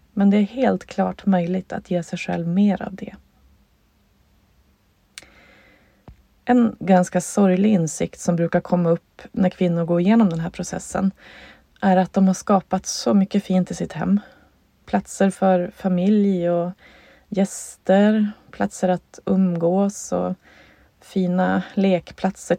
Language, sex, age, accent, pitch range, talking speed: Swedish, female, 20-39, native, 170-200 Hz, 135 wpm